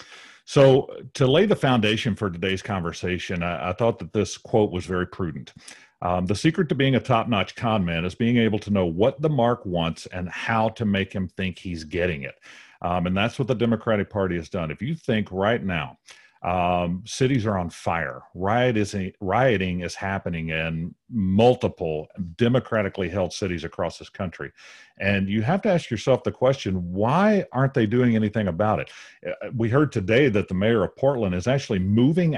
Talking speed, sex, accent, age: 185 wpm, male, American, 50-69